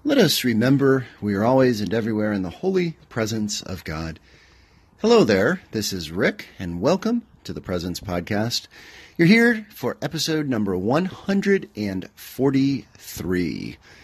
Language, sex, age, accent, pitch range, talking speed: English, male, 40-59, American, 100-140 Hz, 135 wpm